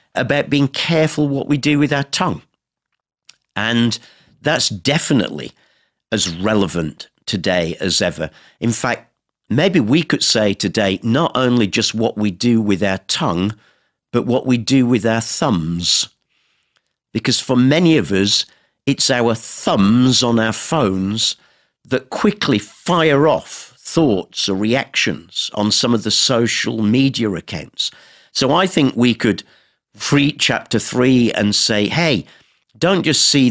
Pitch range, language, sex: 105-140 Hz, English, male